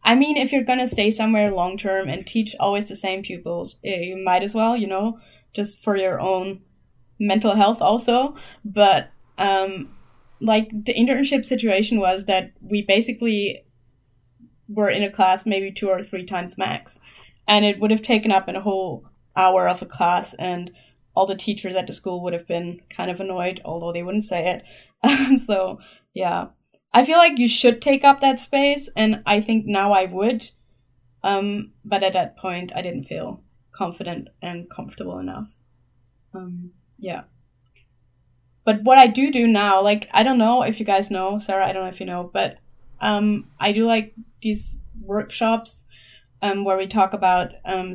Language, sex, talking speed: English, female, 180 wpm